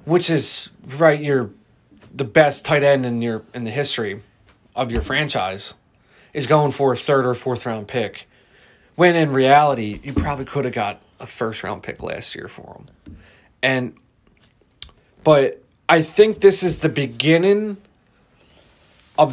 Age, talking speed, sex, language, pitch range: 30-49, 150 wpm, male, English, 125-155 Hz